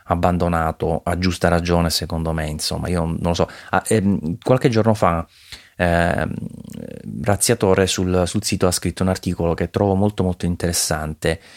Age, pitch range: 20-39, 80-95 Hz